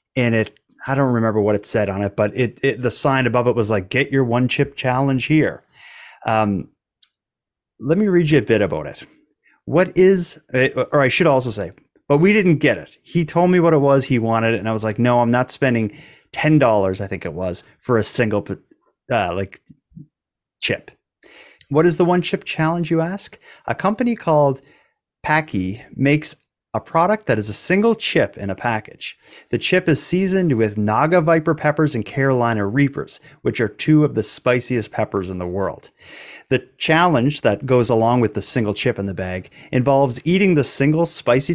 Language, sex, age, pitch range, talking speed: English, male, 30-49, 110-155 Hz, 195 wpm